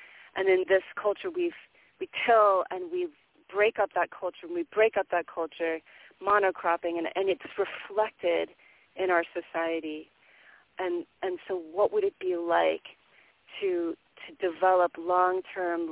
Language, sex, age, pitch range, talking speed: English, female, 40-59, 170-205 Hz, 145 wpm